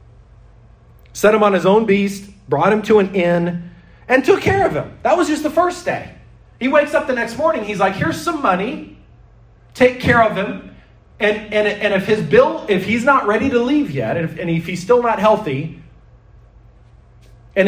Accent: American